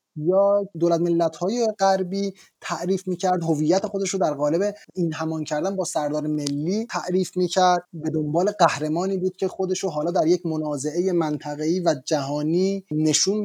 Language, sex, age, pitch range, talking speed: Persian, male, 30-49, 155-195 Hz, 150 wpm